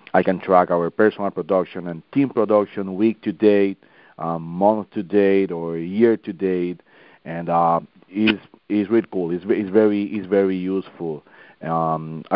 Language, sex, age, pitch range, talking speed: English, male, 40-59, 90-110 Hz, 160 wpm